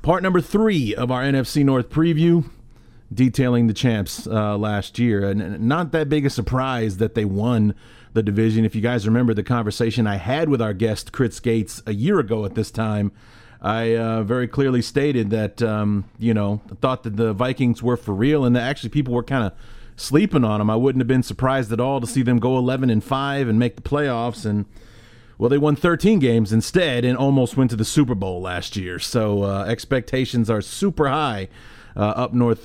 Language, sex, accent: English, male, American